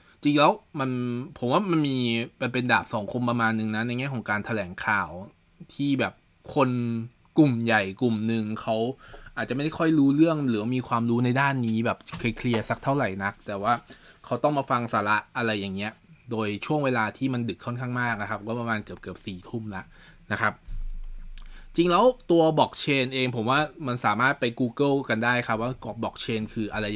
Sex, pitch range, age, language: male, 110-135 Hz, 20-39, Thai